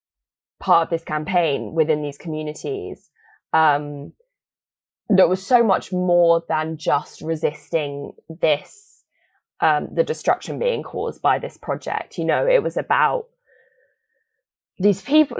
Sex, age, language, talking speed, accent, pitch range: female, 20-39, English, 125 wpm, British, 150-180 Hz